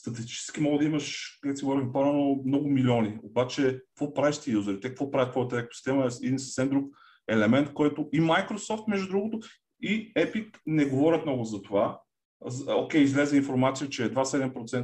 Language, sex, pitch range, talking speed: Bulgarian, male, 115-145 Hz, 165 wpm